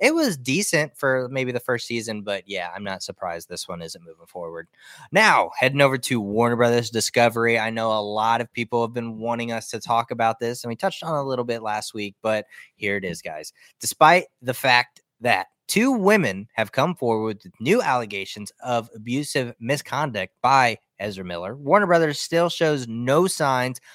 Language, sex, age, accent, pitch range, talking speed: English, male, 20-39, American, 115-140 Hz, 195 wpm